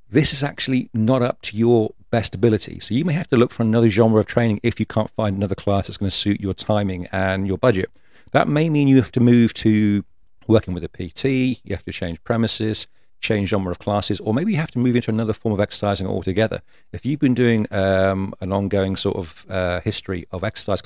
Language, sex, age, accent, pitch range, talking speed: English, male, 40-59, British, 95-115 Hz, 230 wpm